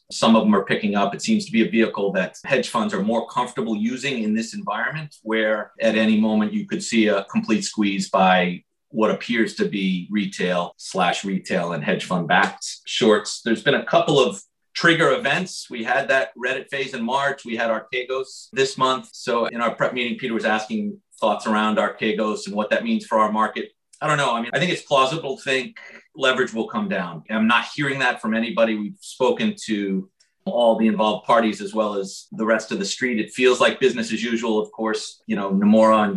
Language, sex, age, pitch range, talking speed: English, male, 40-59, 105-135 Hz, 215 wpm